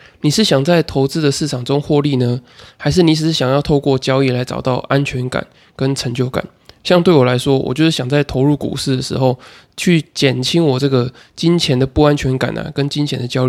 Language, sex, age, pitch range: Chinese, male, 20-39, 130-155 Hz